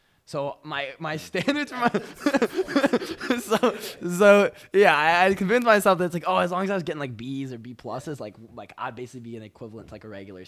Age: 20-39